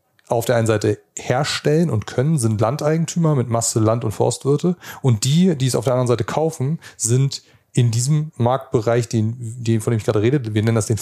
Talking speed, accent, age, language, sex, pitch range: 200 wpm, German, 30-49, German, male, 110-130 Hz